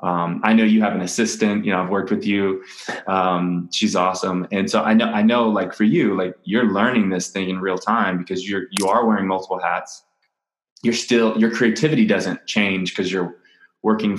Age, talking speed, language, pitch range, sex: 20-39, 205 wpm, English, 95-120 Hz, male